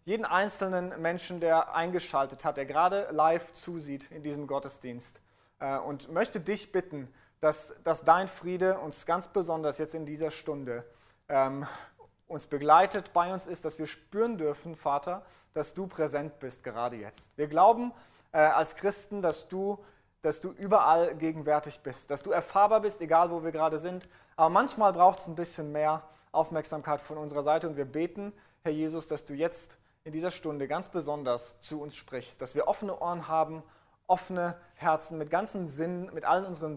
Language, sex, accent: German, male, German